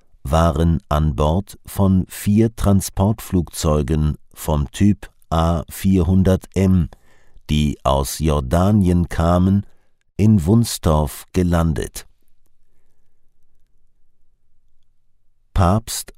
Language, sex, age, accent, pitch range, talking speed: English, male, 50-69, German, 80-95 Hz, 65 wpm